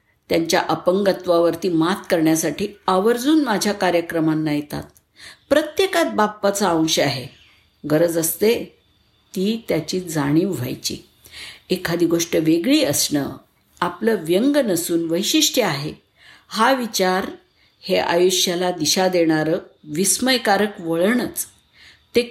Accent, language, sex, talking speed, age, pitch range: native, Marathi, female, 95 wpm, 50-69, 165-215 Hz